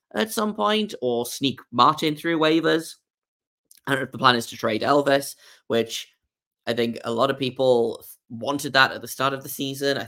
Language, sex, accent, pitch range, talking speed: English, male, British, 115-145 Hz, 200 wpm